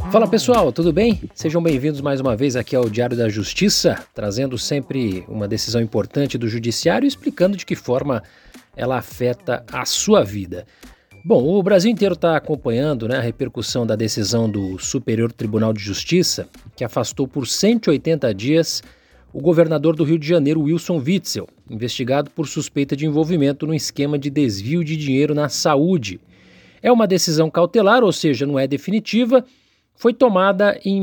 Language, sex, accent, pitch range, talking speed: Portuguese, male, Brazilian, 130-195 Hz, 165 wpm